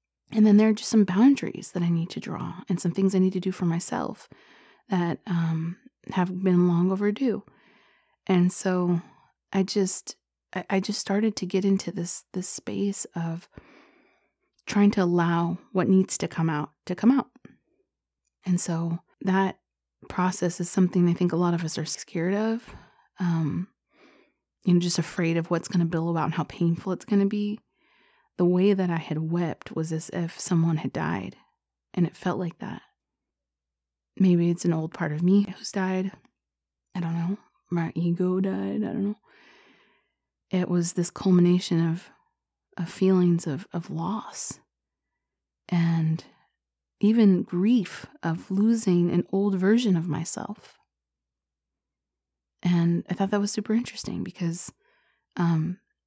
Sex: female